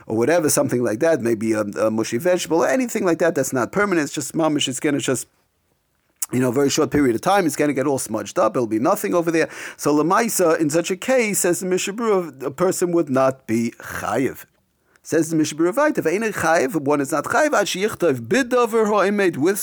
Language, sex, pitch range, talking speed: English, male, 130-185 Hz, 210 wpm